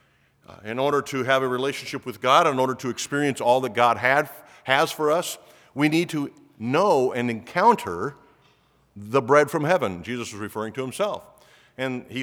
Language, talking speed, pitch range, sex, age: English, 175 wpm, 120-155 Hz, male, 50-69